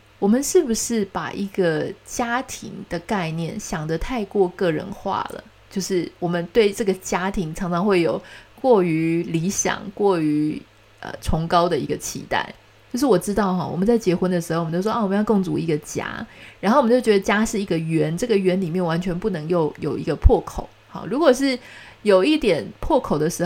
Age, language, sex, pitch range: 30-49, Chinese, female, 170-225 Hz